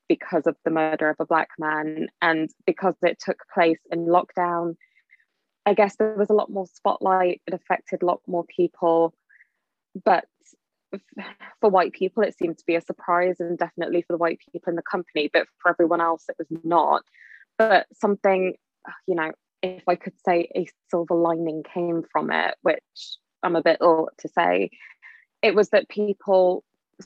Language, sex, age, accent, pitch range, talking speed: English, female, 20-39, British, 165-200 Hz, 175 wpm